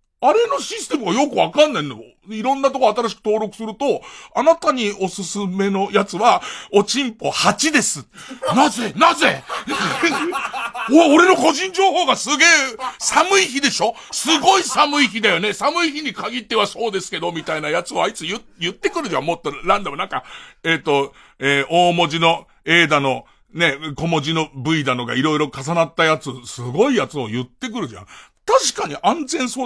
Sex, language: male, Japanese